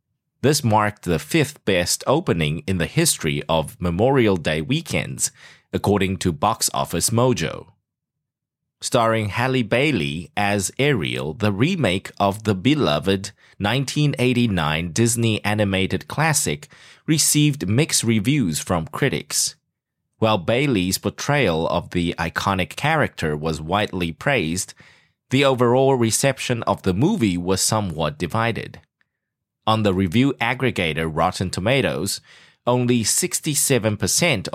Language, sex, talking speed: English, male, 110 wpm